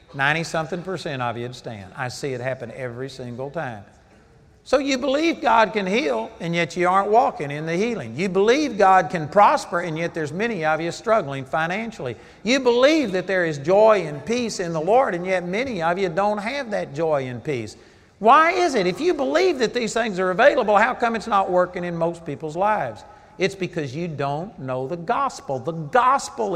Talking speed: 205 wpm